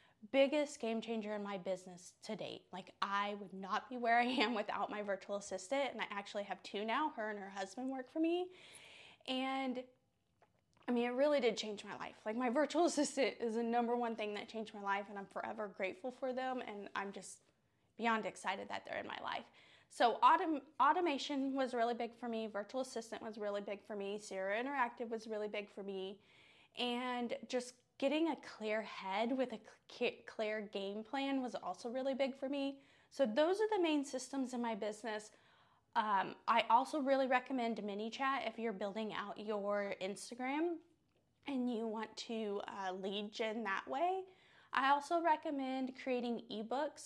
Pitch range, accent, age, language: 210-270 Hz, American, 20-39, English